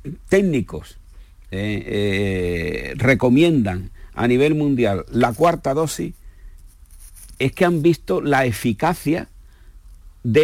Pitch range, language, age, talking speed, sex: 100-145 Hz, Spanish, 50-69, 100 wpm, male